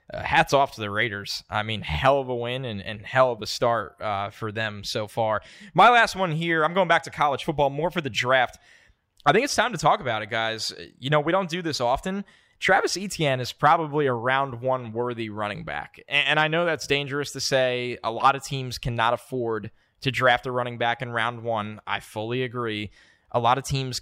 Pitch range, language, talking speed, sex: 110-140 Hz, English, 225 wpm, male